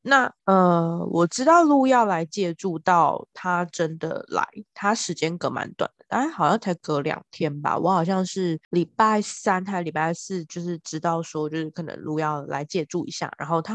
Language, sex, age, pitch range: Chinese, female, 20-39, 160-190 Hz